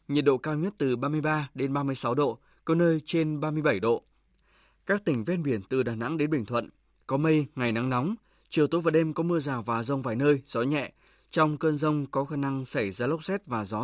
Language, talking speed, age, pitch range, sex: Vietnamese, 260 wpm, 20-39, 130-165 Hz, male